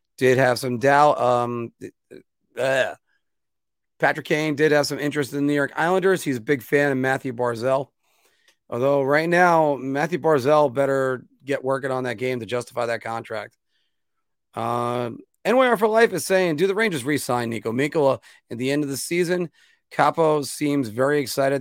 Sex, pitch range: male, 120-150 Hz